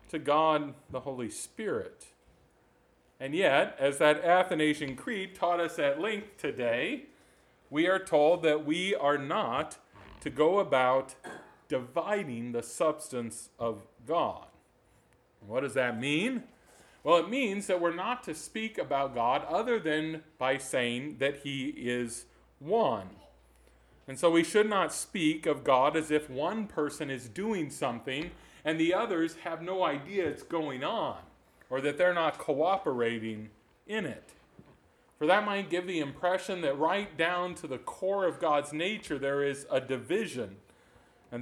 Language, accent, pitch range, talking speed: English, American, 135-180 Hz, 150 wpm